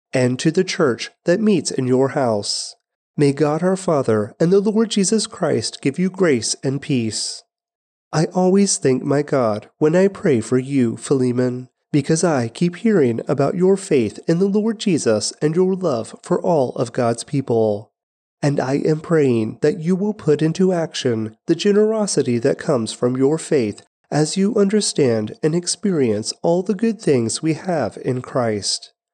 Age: 30-49